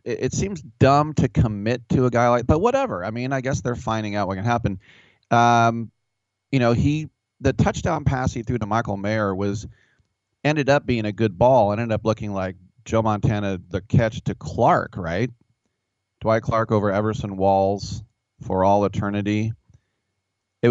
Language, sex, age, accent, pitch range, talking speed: English, male, 40-59, American, 95-115 Hz, 175 wpm